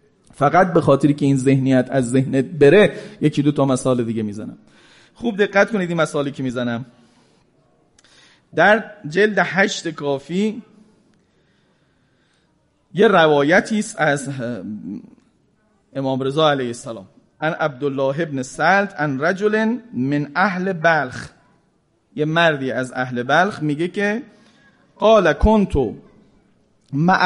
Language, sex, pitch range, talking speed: Persian, male, 140-210 Hz, 115 wpm